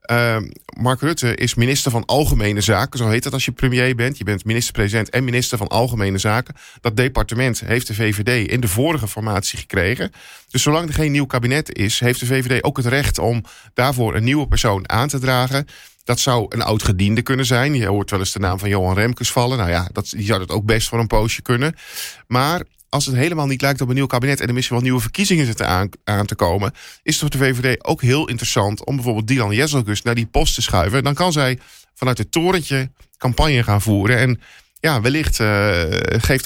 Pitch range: 110-130 Hz